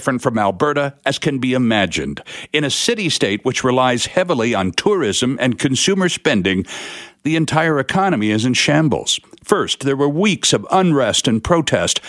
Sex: male